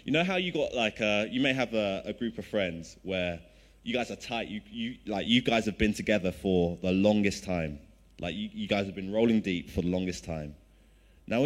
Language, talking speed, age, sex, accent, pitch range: English, 235 wpm, 20-39, male, British, 90-120 Hz